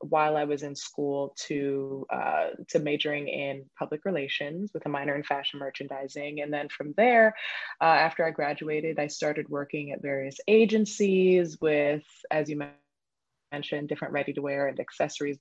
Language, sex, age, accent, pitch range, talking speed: English, female, 20-39, American, 145-165 Hz, 155 wpm